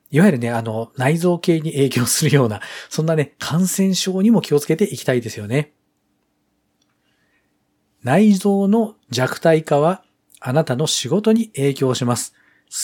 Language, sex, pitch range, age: Japanese, male, 125-200 Hz, 40-59